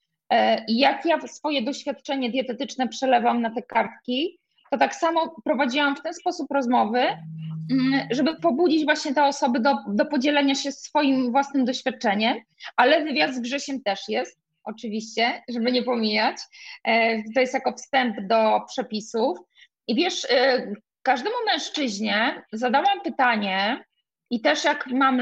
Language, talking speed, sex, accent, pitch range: Polish, 130 wpm, female, native, 225-290 Hz